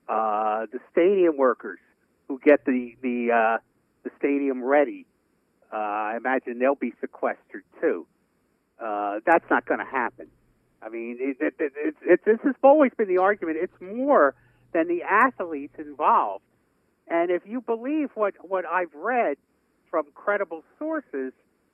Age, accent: 50-69, American